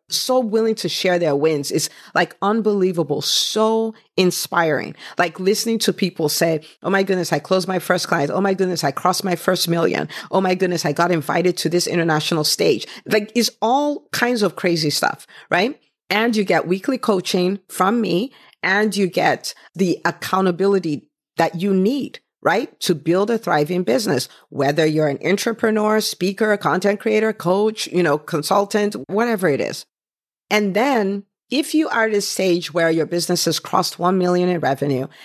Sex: female